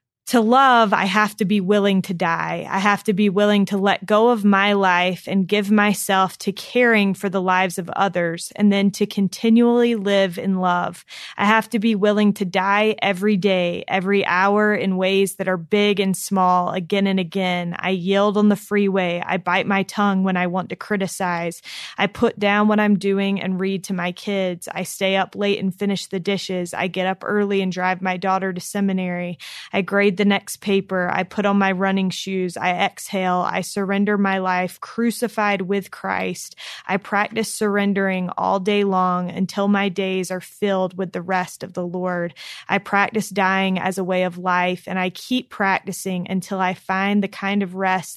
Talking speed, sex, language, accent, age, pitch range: 195 wpm, female, English, American, 20-39, 185-205 Hz